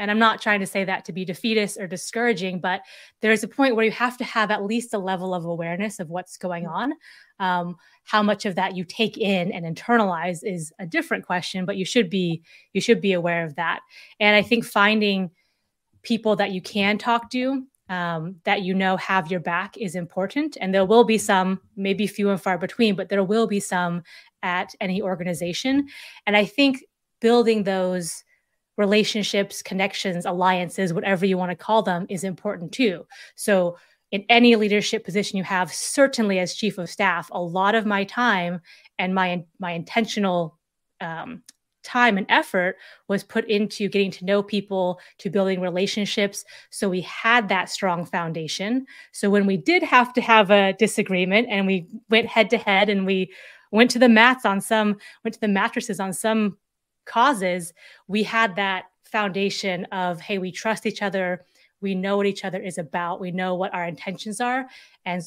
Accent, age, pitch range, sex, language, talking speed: American, 20-39, 185-220 Hz, female, English, 190 wpm